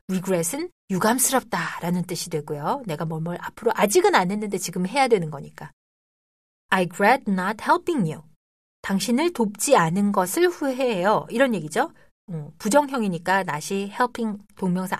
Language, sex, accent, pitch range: Korean, female, native, 170-275 Hz